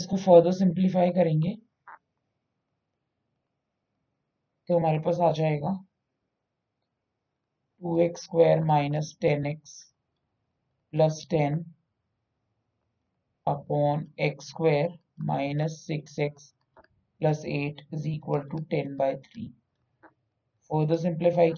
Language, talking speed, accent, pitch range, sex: Hindi, 40 wpm, native, 140-170 Hz, male